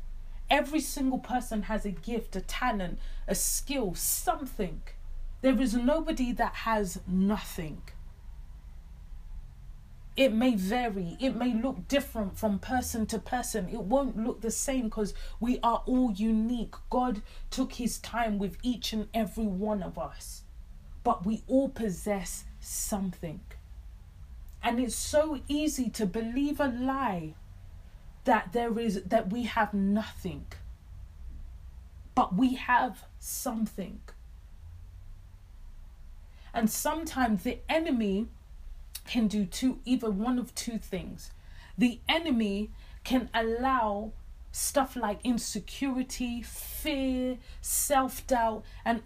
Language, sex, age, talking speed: English, female, 30-49, 115 wpm